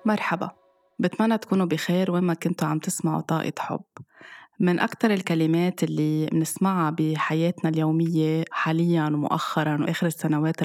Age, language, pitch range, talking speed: 20-39, Arabic, 155-175 Hz, 120 wpm